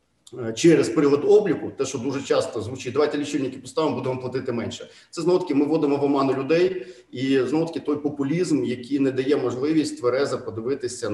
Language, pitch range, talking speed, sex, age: Ukrainian, 120-155 Hz, 165 wpm, male, 40-59